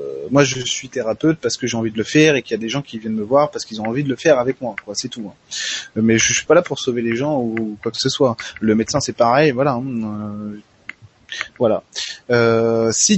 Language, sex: French, male